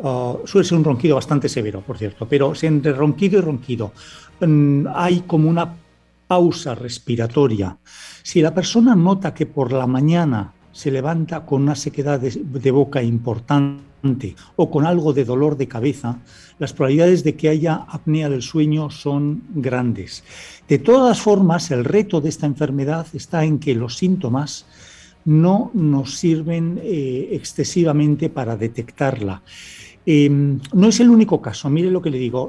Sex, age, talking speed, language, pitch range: male, 60-79, 155 wpm, Spanish, 130-165 Hz